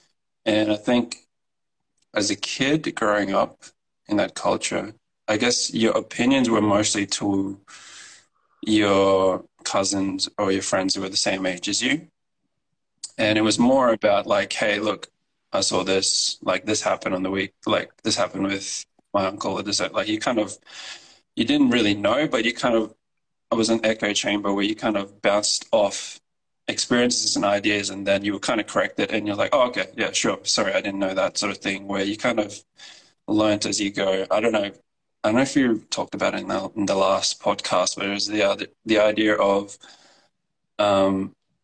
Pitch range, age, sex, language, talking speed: 95-110 Hz, 20-39, male, English, 195 wpm